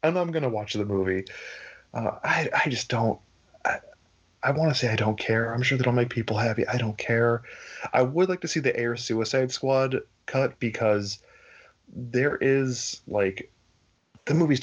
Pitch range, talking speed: 105-135 Hz, 185 wpm